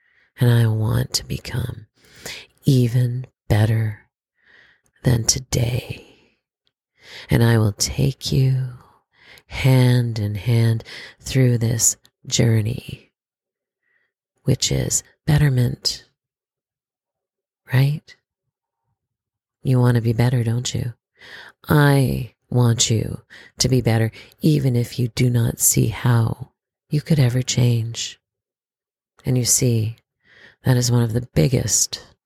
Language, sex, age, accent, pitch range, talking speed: English, female, 40-59, American, 115-130 Hz, 105 wpm